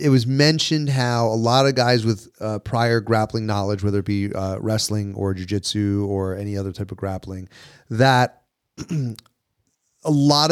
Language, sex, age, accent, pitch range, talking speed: English, male, 30-49, American, 105-135 Hz, 165 wpm